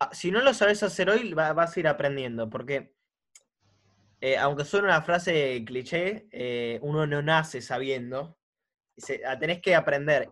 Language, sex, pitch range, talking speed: Spanish, male, 130-180 Hz, 175 wpm